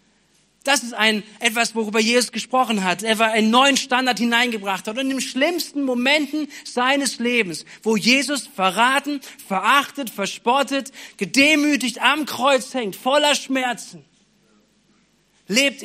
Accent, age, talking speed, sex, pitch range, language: German, 40-59, 130 wpm, male, 190-245 Hz, German